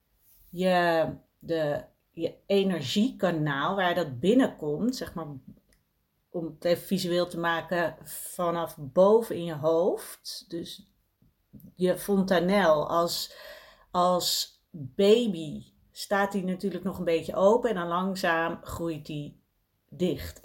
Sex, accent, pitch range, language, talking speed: female, Dutch, 165-205 Hz, Dutch, 110 wpm